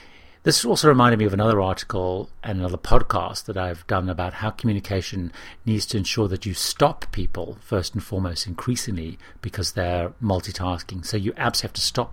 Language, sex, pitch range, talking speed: English, male, 90-115 Hz, 180 wpm